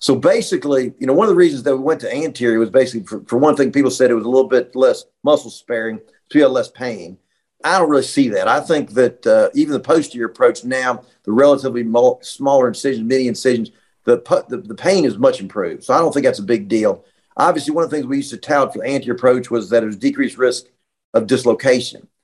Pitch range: 125-195 Hz